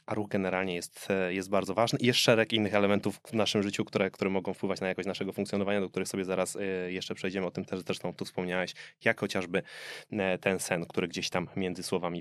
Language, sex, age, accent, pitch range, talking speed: Polish, male, 20-39, native, 95-130 Hz, 215 wpm